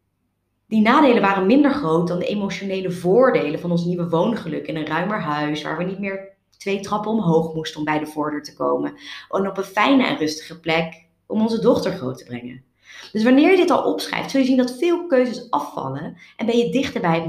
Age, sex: 30-49, female